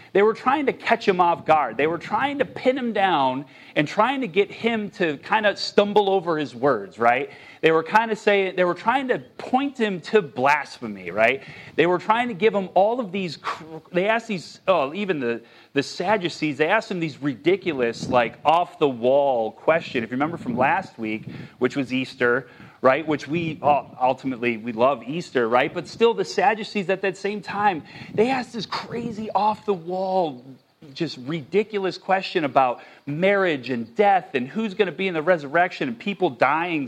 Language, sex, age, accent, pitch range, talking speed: English, male, 30-49, American, 145-210 Hz, 190 wpm